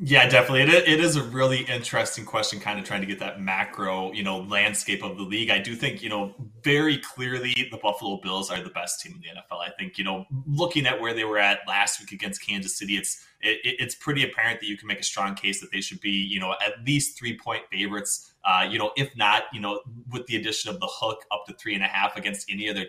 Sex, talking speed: male, 255 wpm